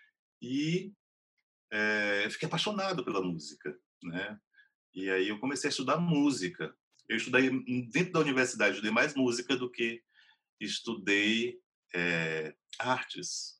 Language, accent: Portuguese, Brazilian